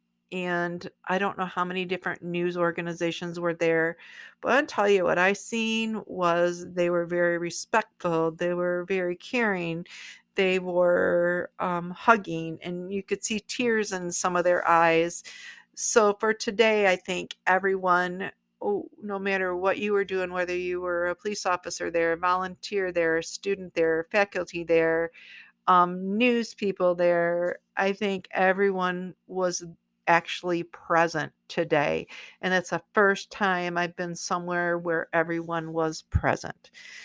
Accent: American